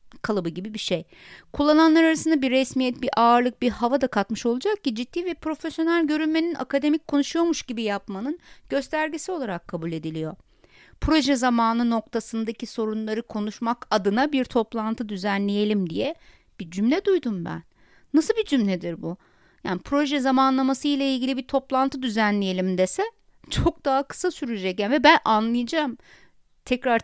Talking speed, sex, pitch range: 140 wpm, female, 220-300 Hz